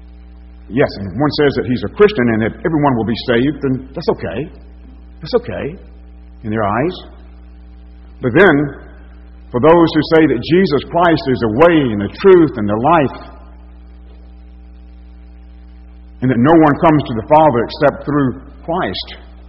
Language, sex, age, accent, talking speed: English, male, 60-79, American, 155 wpm